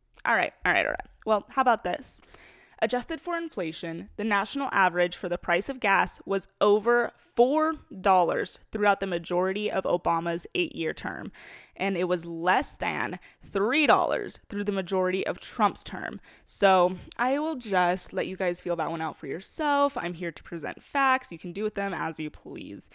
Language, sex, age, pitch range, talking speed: English, female, 20-39, 175-230 Hz, 180 wpm